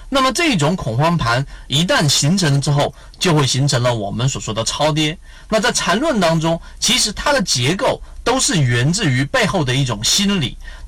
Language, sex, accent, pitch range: Chinese, male, native, 130-170 Hz